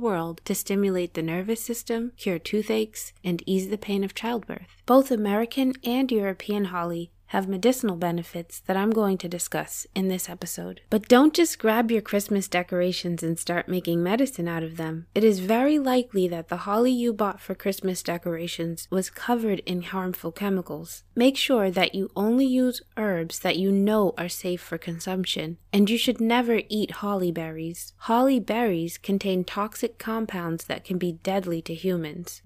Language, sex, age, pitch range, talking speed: English, female, 20-39, 180-230 Hz, 170 wpm